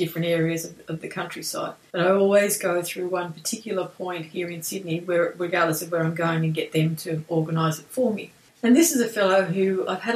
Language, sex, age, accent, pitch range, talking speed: English, female, 30-49, Australian, 180-210 Hz, 230 wpm